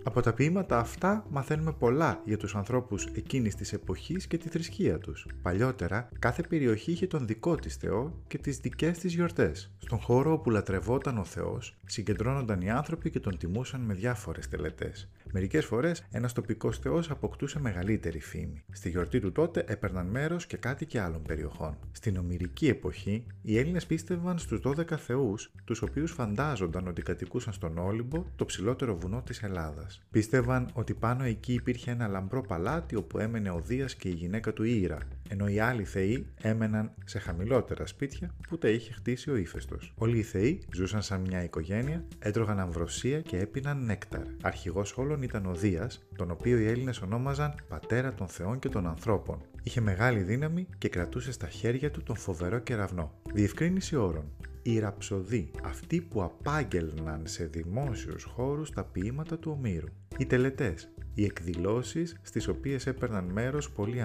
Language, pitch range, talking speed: Greek, 90-125 Hz, 165 wpm